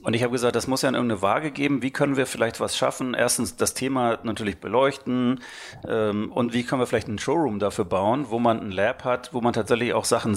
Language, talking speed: German, 245 wpm